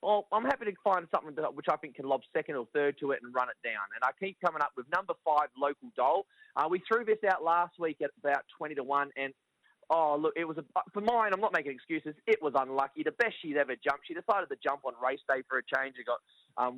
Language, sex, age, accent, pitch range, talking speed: English, male, 20-39, Australian, 135-180 Hz, 270 wpm